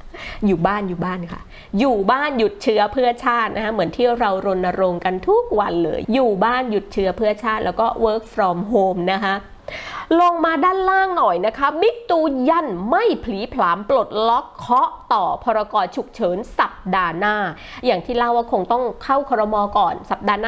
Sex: female